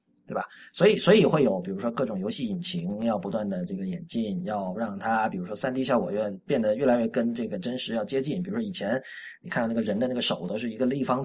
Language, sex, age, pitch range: Chinese, male, 30-49, 130-200 Hz